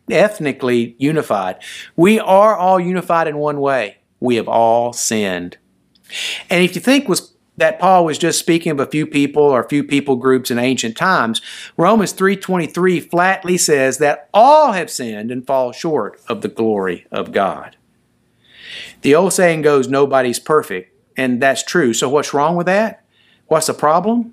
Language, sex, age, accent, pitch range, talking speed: English, male, 50-69, American, 120-185 Hz, 165 wpm